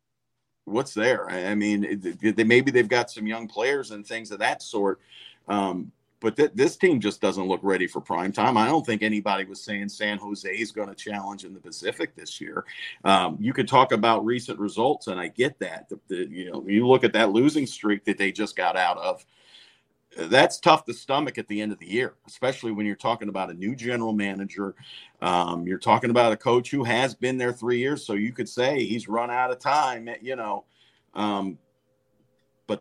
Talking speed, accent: 210 wpm, American